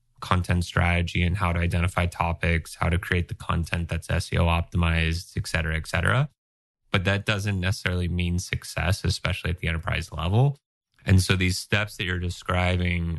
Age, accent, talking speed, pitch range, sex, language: 20-39, American, 170 wpm, 85-95 Hz, male, English